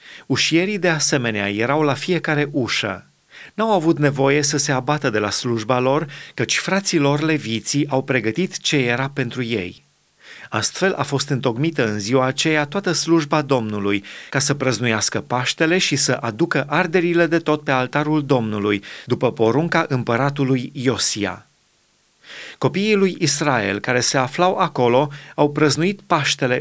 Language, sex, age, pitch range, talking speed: Romanian, male, 30-49, 125-165 Hz, 145 wpm